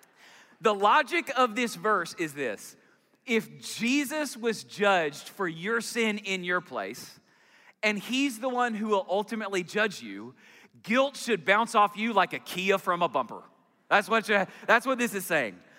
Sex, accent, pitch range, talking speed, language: male, American, 180-230 Hz, 170 wpm, English